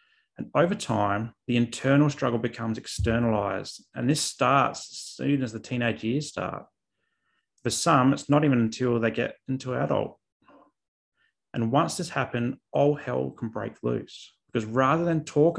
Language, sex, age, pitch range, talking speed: English, male, 30-49, 115-140 Hz, 160 wpm